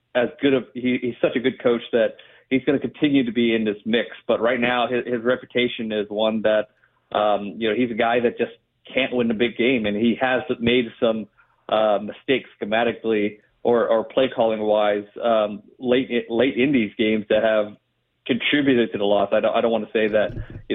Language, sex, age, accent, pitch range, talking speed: English, male, 40-59, American, 110-125 Hz, 215 wpm